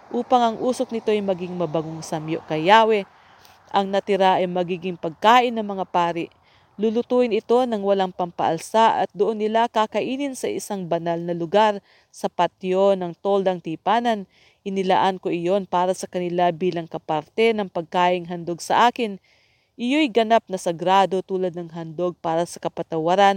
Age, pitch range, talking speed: 40-59, 175-210 Hz, 150 wpm